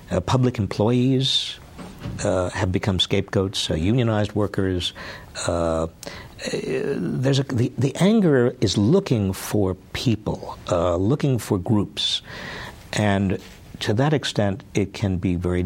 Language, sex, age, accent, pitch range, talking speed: English, male, 60-79, American, 90-115 Hz, 125 wpm